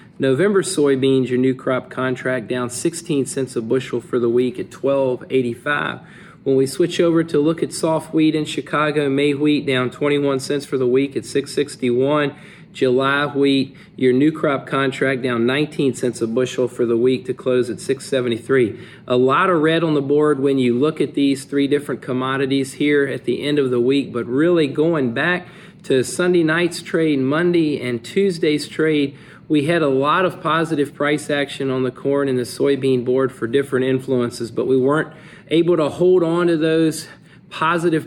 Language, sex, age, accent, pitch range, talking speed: English, male, 40-59, American, 130-160 Hz, 185 wpm